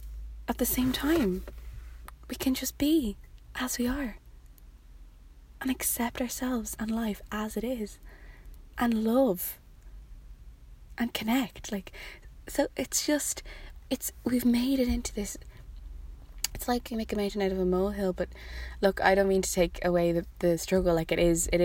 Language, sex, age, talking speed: English, female, 20-39, 160 wpm